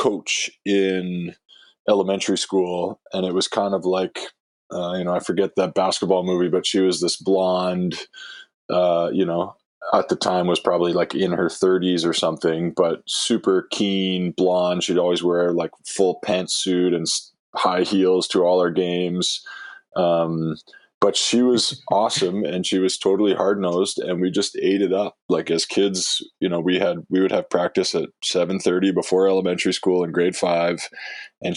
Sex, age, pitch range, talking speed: male, 20-39, 90-95 Hz, 175 wpm